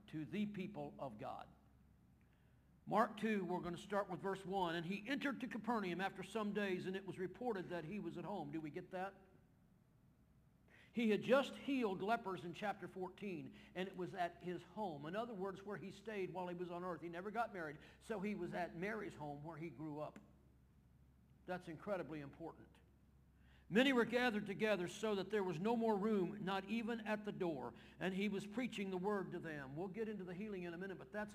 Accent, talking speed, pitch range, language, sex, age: American, 210 wpm, 170-210 Hz, English, male, 50-69